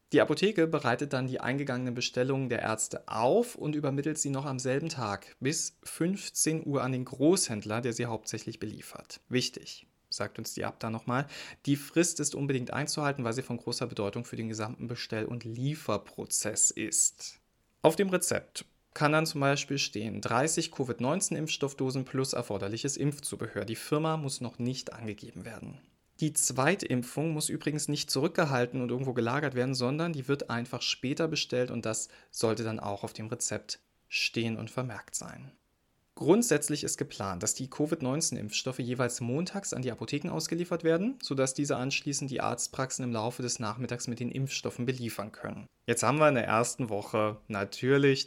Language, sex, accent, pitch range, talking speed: German, male, German, 115-145 Hz, 165 wpm